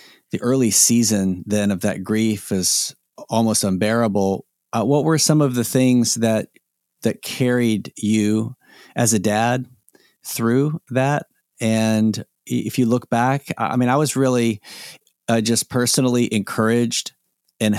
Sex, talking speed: male, 140 wpm